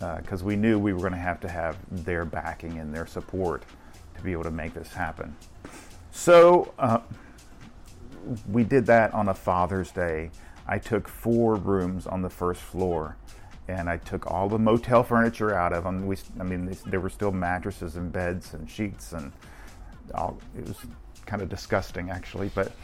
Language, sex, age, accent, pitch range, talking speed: English, male, 40-59, American, 85-105 Hz, 185 wpm